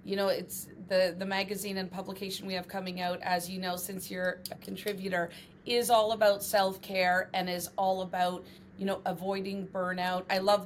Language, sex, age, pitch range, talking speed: English, female, 30-49, 180-220 Hz, 185 wpm